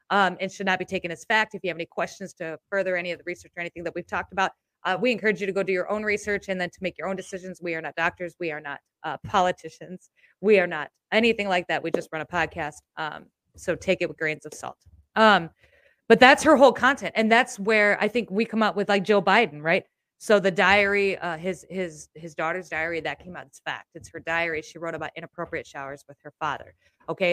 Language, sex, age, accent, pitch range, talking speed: English, female, 30-49, American, 165-205 Hz, 255 wpm